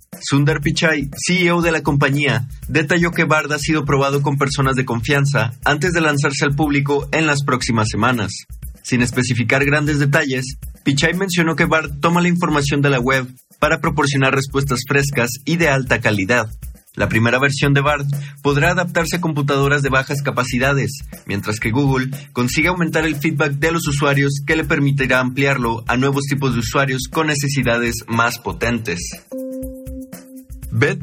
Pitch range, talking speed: 130-155 Hz, 160 wpm